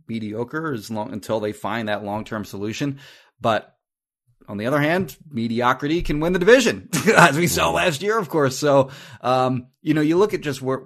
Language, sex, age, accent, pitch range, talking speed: English, male, 30-49, American, 105-135 Hz, 195 wpm